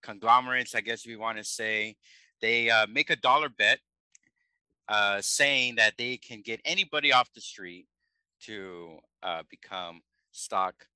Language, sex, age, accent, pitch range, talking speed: English, male, 50-69, American, 100-125 Hz, 150 wpm